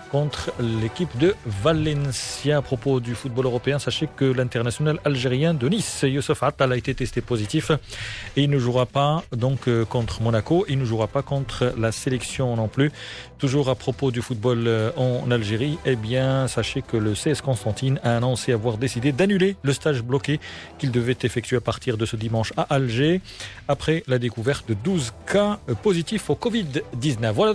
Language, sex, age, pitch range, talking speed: Arabic, male, 40-59, 120-155 Hz, 175 wpm